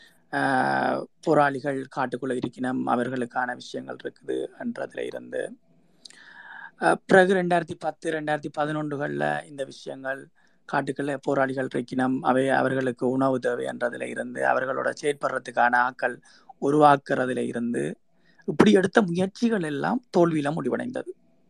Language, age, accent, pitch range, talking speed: Tamil, 20-39, native, 135-175 Hz, 80 wpm